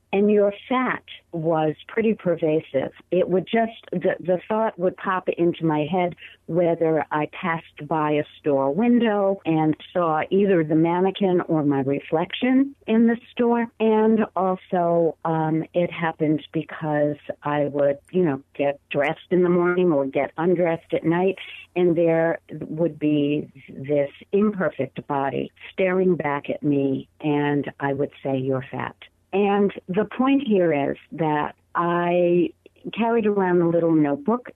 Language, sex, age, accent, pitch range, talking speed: English, female, 50-69, American, 150-190 Hz, 145 wpm